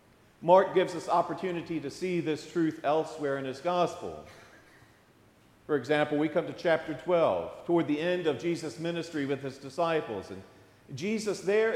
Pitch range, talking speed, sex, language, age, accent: 140-190 Hz, 160 wpm, male, English, 50-69, American